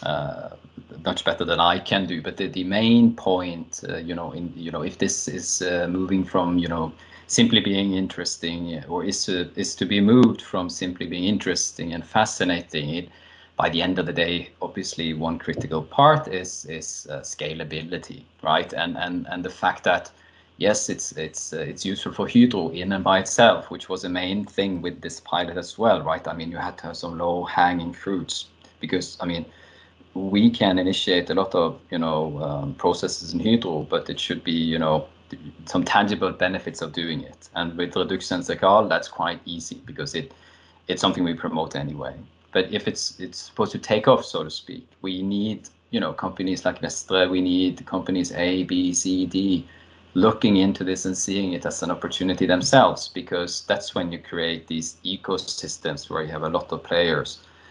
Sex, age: male, 30-49